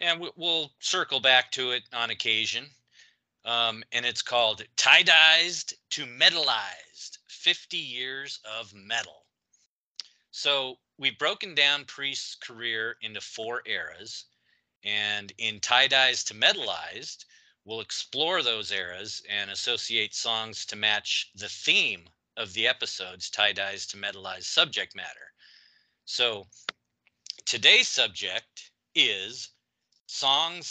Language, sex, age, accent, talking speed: English, male, 40-59, American, 115 wpm